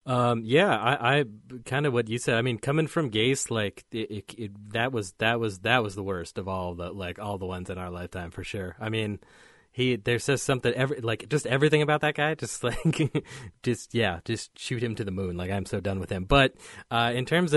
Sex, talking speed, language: male, 245 wpm, English